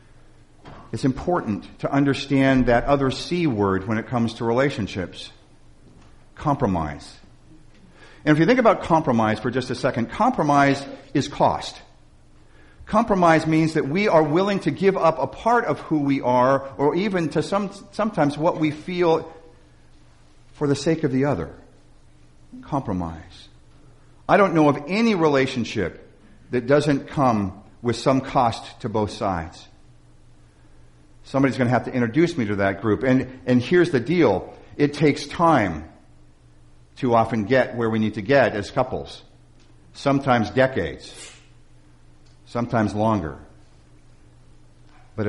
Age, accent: 50-69, American